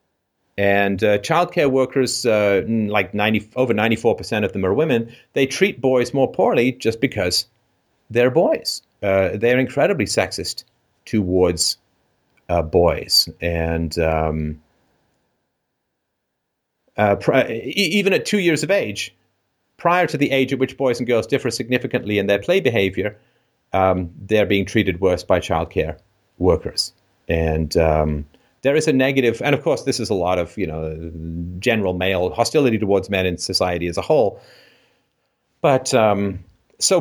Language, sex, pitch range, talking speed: English, male, 95-130 Hz, 150 wpm